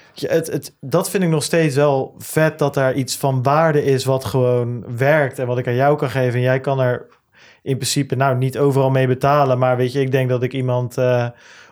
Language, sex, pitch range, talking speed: Dutch, male, 120-135 Hz, 235 wpm